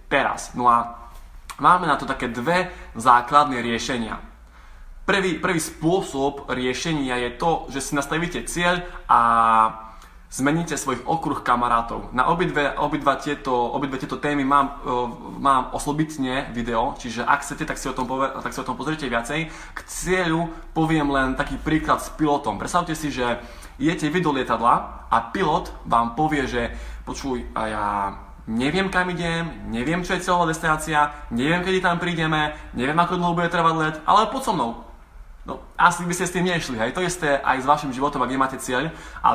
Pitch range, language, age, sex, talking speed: 125-160 Hz, Slovak, 20-39, male, 170 wpm